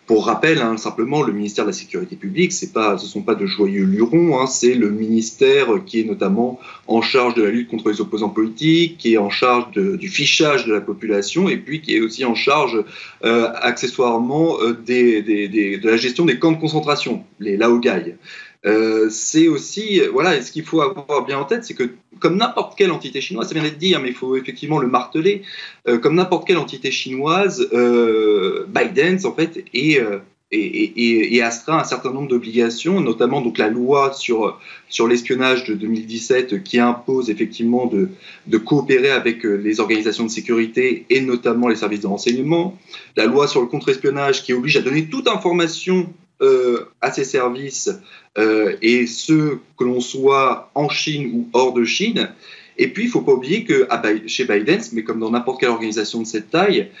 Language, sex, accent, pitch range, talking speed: French, male, French, 115-180 Hz, 190 wpm